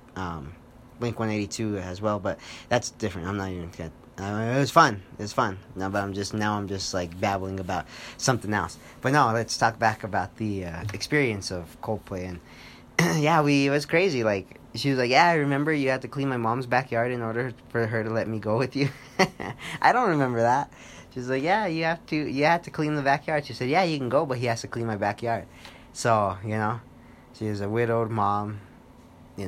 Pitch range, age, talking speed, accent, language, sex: 100-125 Hz, 20-39, 220 wpm, American, English, male